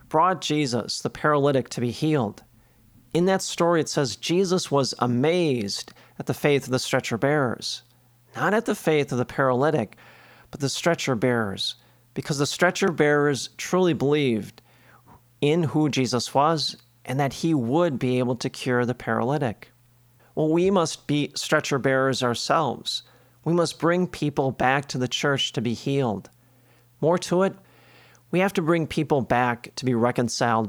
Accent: American